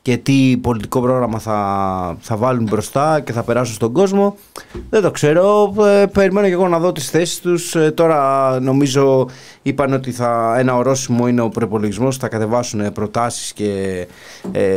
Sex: male